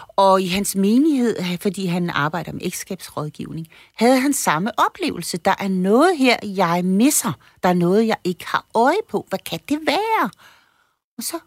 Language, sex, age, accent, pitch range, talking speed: Danish, female, 60-79, native, 170-235 Hz, 175 wpm